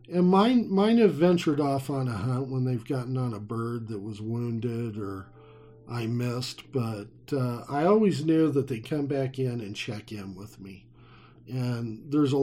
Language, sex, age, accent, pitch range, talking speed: English, male, 50-69, American, 115-140 Hz, 190 wpm